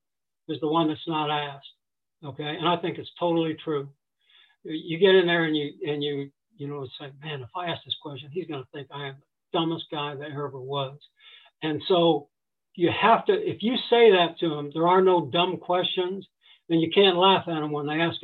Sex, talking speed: male, 225 wpm